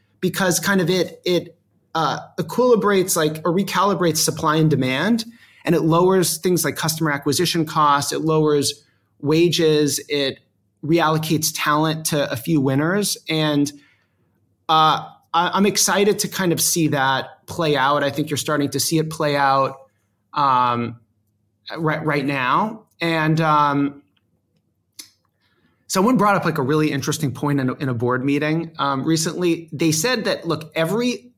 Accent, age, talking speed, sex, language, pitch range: American, 30-49, 150 wpm, male, English, 140-170 Hz